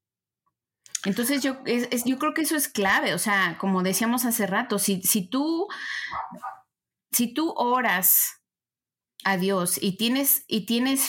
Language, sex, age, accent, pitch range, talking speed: Spanish, female, 30-49, Mexican, 180-230 Hz, 150 wpm